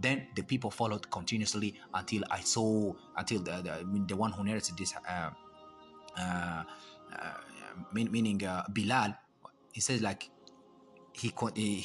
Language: English